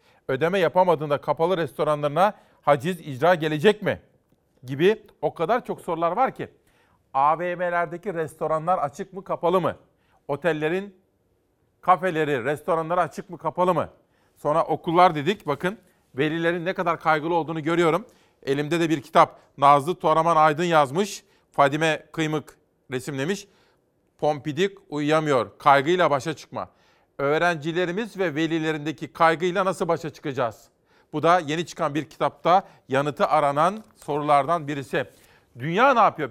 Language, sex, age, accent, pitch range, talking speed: Turkish, male, 40-59, native, 155-190 Hz, 120 wpm